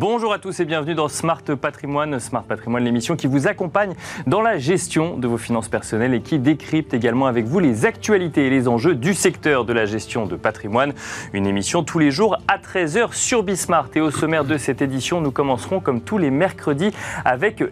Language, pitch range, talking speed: French, 120-165 Hz, 205 wpm